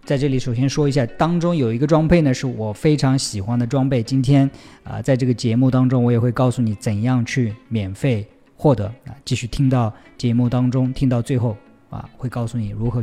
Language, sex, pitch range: Chinese, male, 115-140 Hz